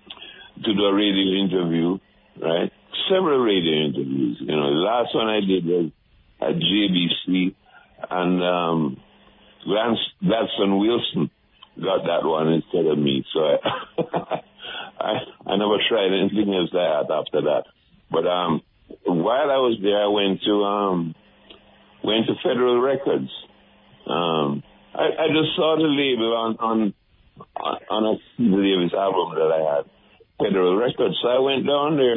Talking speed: 140 wpm